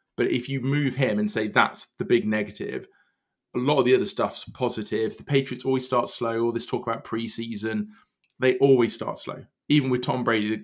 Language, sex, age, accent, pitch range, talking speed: English, male, 20-39, British, 110-130 Hz, 205 wpm